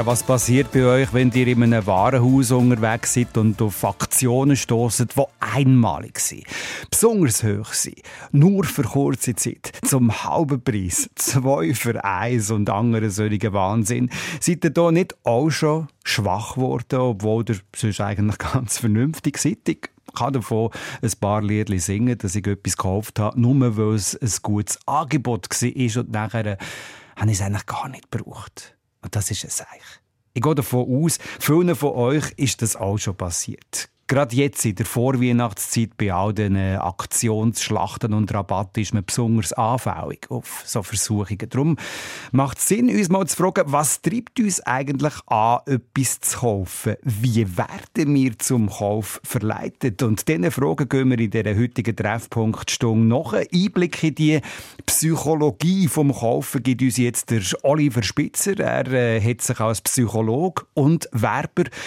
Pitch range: 110-140 Hz